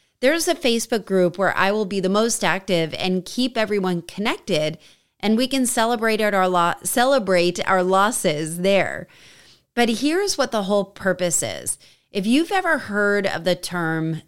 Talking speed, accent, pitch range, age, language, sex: 155 wpm, American, 175-225 Hz, 30-49, English, female